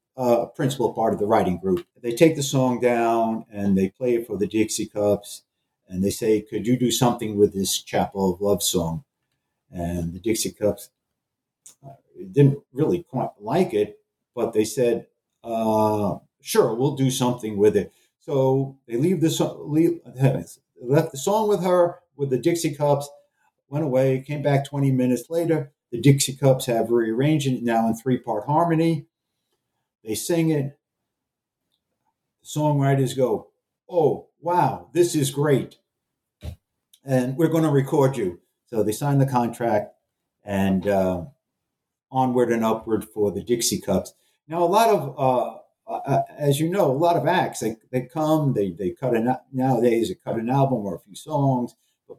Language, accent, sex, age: English, American, male, 50-69